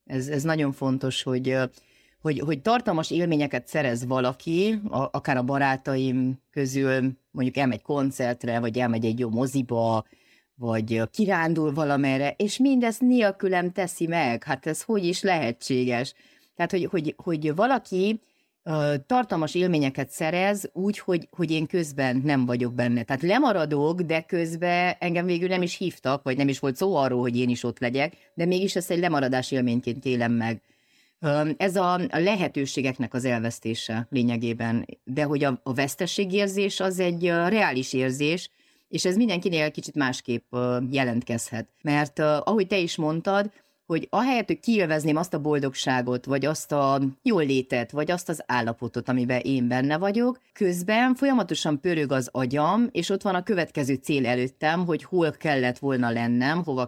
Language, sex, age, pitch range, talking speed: Hungarian, female, 30-49, 130-180 Hz, 150 wpm